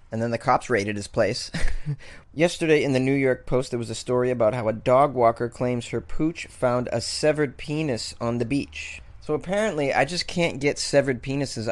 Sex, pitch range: male, 115-155 Hz